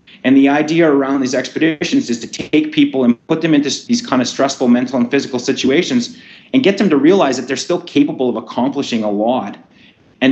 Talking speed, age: 210 wpm, 30-49